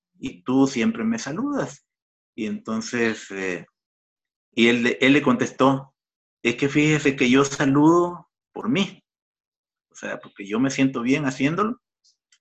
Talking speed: 140 wpm